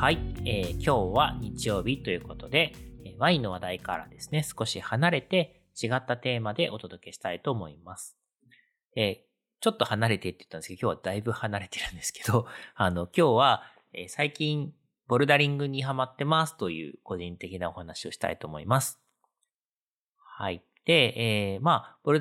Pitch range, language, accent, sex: 95-145 Hz, Japanese, native, male